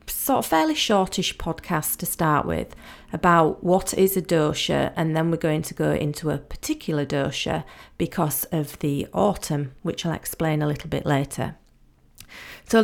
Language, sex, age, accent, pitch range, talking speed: English, female, 40-59, British, 155-190 Hz, 165 wpm